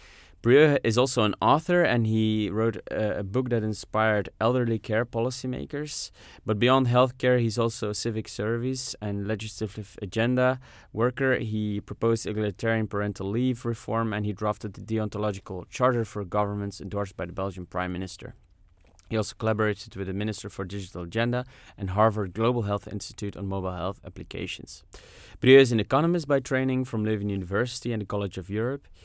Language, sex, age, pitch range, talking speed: English, male, 20-39, 100-120 Hz, 165 wpm